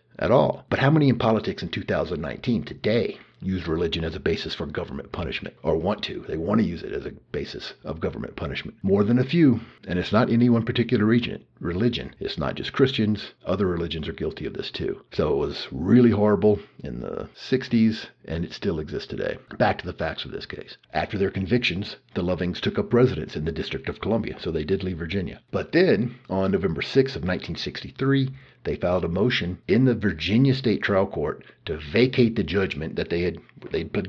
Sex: male